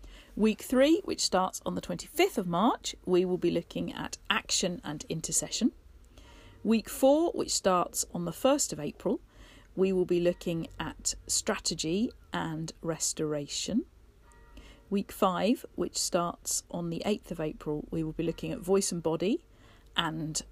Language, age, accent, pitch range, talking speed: English, 40-59, British, 160-225 Hz, 150 wpm